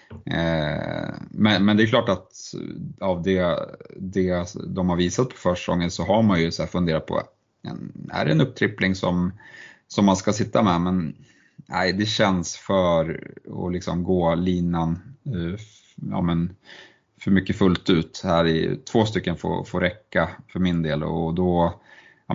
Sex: male